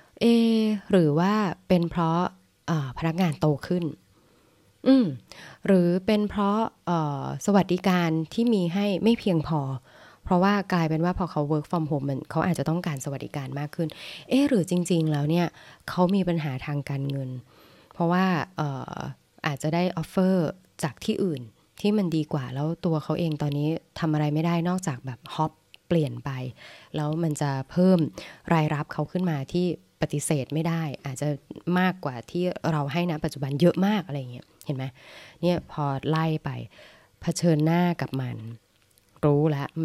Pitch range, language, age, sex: 140-175 Hz, Thai, 20-39, female